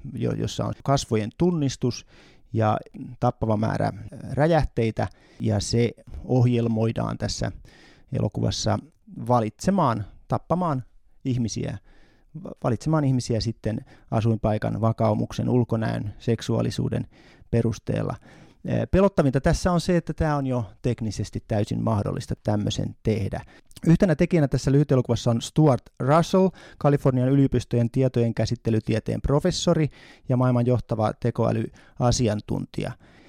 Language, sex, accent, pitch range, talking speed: Finnish, male, native, 110-140 Hz, 95 wpm